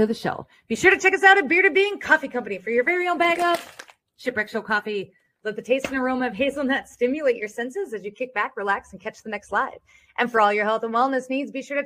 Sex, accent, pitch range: female, American, 205-280 Hz